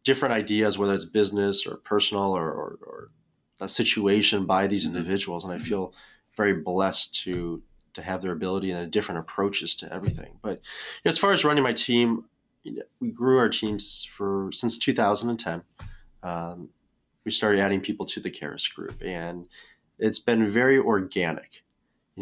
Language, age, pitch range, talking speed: English, 20-39, 90-105 Hz, 160 wpm